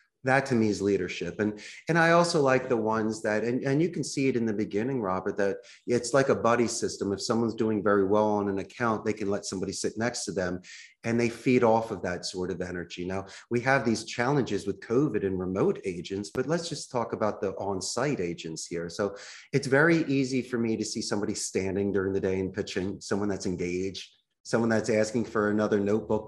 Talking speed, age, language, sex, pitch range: 220 wpm, 30-49, English, male, 100-120 Hz